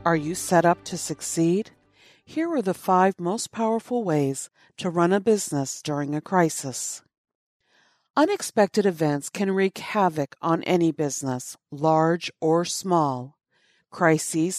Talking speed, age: 130 wpm, 50-69